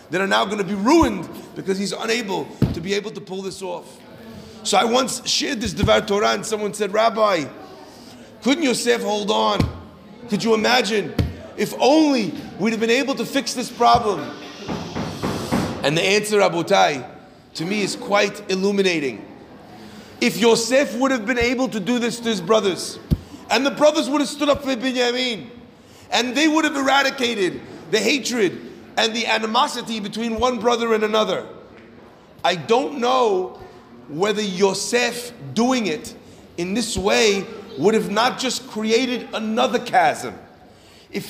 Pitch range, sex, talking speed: 215-265 Hz, male, 155 wpm